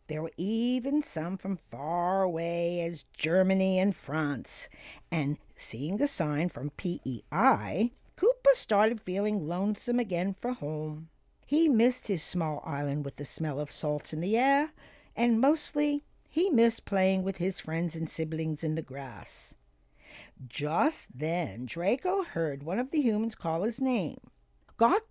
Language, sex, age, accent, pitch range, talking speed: English, female, 50-69, American, 160-260 Hz, 150 wpm